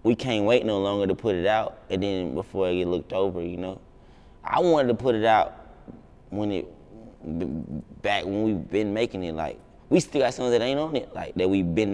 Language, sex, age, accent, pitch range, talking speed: English, male, 20-39, American, 90-115 Hz, 225 wpm